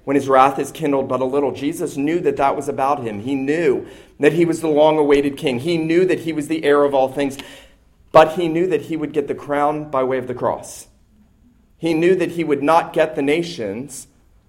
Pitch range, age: 115-145 Hz, 40-59